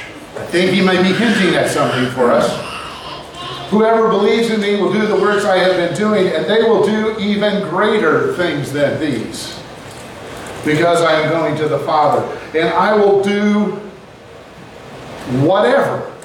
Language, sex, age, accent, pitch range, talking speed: English, male, 50-69, American, 160-210 Hz, 155 wpm